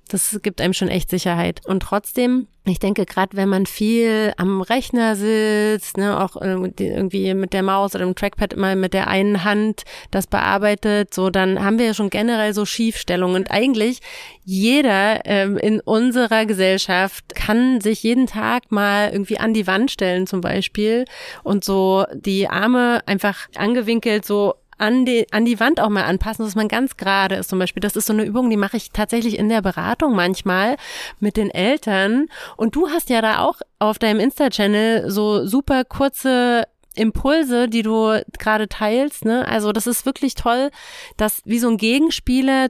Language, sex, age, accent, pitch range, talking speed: German, female, 30-49, German, 195-235 Hz, 180 wpm